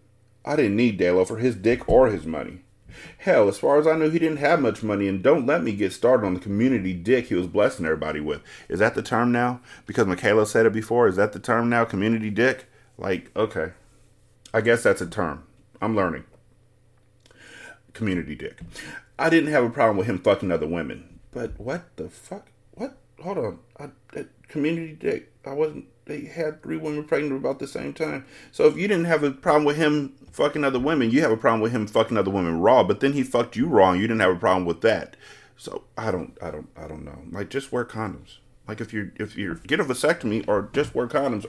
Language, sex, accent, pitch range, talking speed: English, male, American, 105-155 Hz, 225 wpm